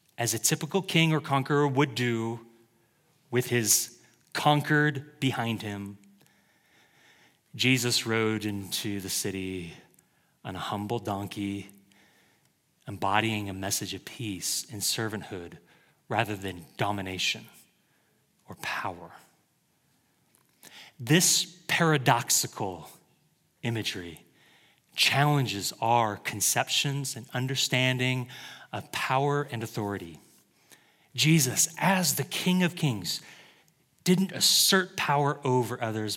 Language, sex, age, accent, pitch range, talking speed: English, male, 30-49, American, 115-150 Hz, 95 wpm